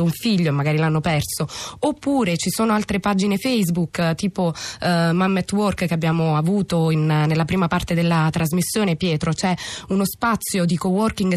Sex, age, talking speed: female, 20-39, 165 wpm